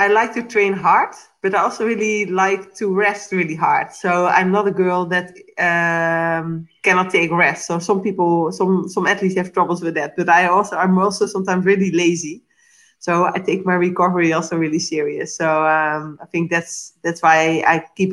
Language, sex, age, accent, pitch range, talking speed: English, female, 20-39, Dutch, 165-200 Hz, 195 wpm